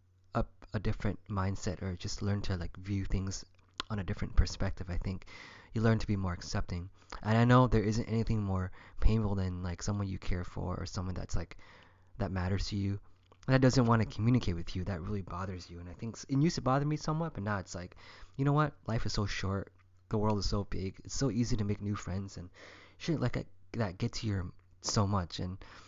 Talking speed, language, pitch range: 225 wpm, English, 90-105 Hz